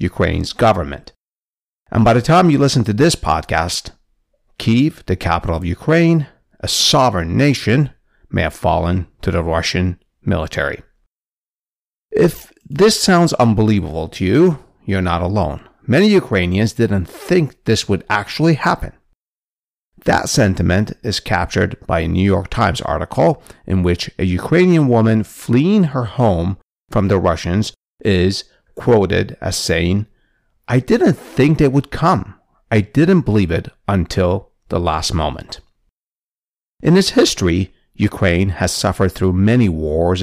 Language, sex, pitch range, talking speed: English, male, 90-130 Hz, 135 wpm